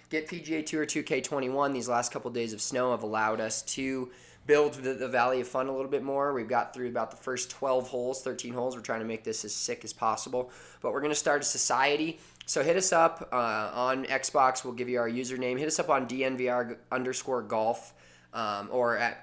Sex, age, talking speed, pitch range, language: male, 20-39, 230 wpm, 115-135 Hz, English